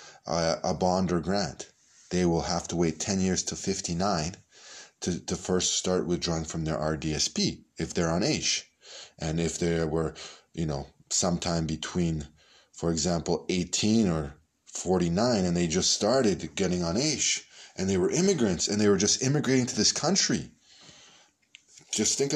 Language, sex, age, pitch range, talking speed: Hebrew, male, 20-39, 85-110 Hz, 160 wpm